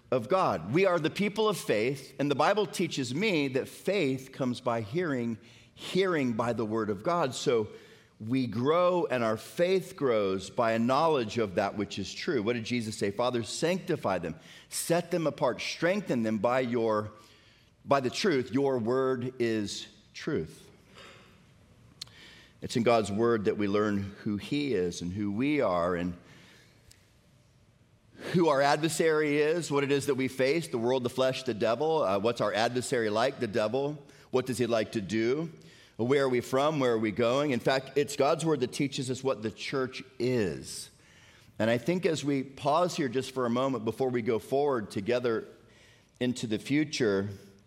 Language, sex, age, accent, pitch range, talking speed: English, male, 40-59, American, 115-145 Hz, 180 wpm